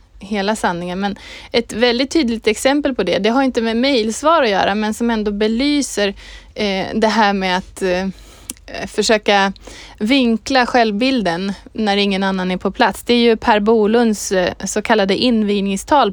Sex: female